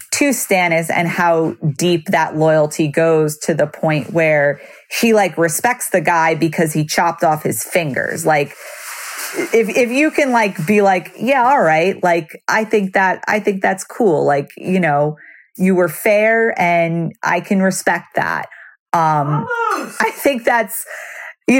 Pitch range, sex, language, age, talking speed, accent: 155-200 Hz, female, English, 30-49, 160 wpm, American